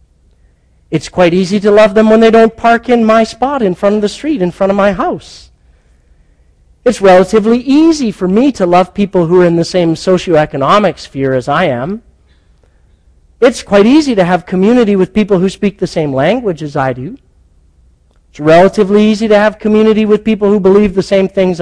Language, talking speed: English, 195 wpm